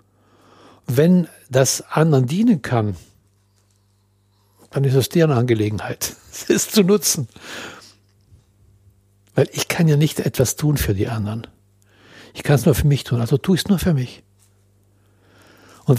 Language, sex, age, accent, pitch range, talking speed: German, male, 60-79, German, 105-150 Hz, 140 wpm